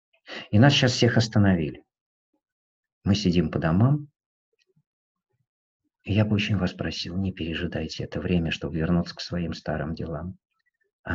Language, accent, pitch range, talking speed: Russian, native, 90-125 Hz, 140 wpm